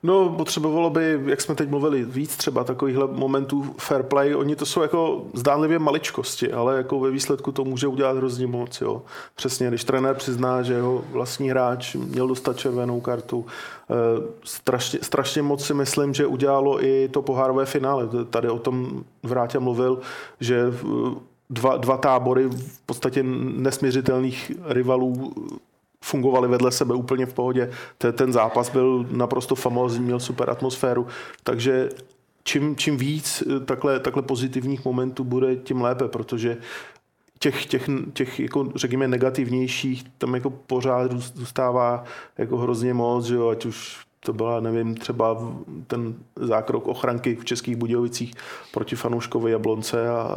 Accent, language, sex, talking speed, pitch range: native, Czech, male, 145 wpm, 120-135 Hz